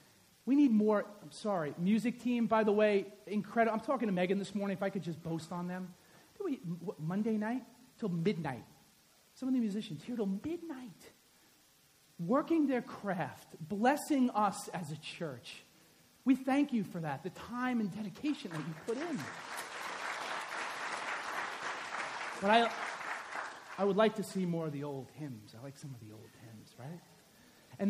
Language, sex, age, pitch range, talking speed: English, male, 40-59, 160-225 Hz, 170 wpm